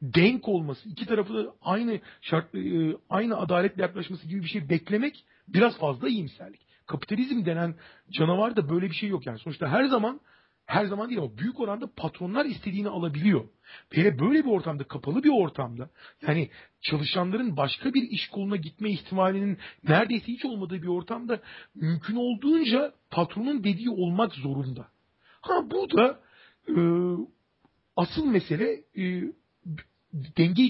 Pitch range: 160-215 Hz